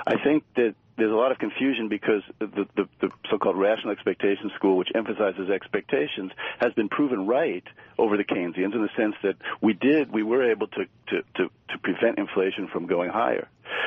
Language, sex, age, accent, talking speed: English, male, 50-69, American, 190 wpm